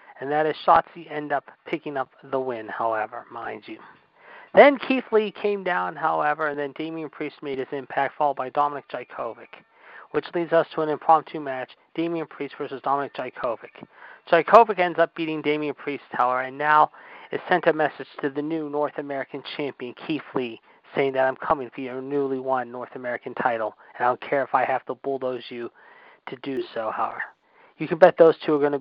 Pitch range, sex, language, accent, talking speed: 130-175 Hz, male, English, American, 200 wpm